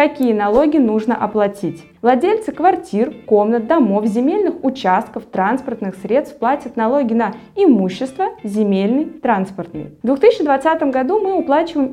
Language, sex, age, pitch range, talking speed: Russian, female, 20-39, 210-290 Hz, 115 wpm